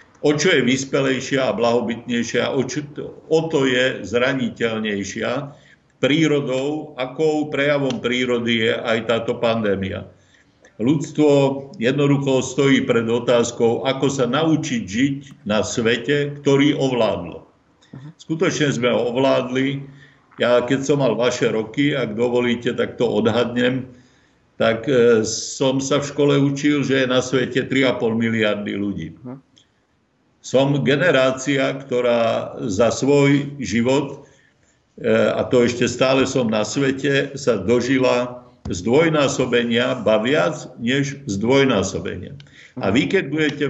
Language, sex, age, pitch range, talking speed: Slovak, male, 50-69, 120-140 Hz, 115 wpm